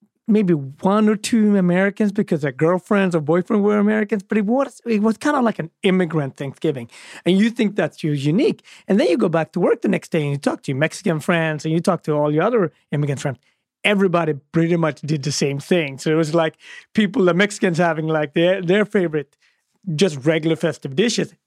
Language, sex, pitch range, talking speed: English, male, 150-200 Hz, 220 wpm